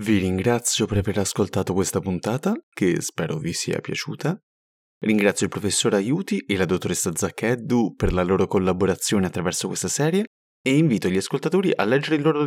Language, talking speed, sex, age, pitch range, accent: Italian, 170 wpm, male, 20-39, 95-155 Hz, native